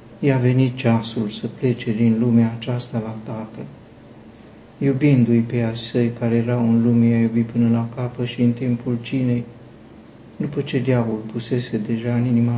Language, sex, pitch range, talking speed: Romanian, male, 115-125 Hz, 160 wpm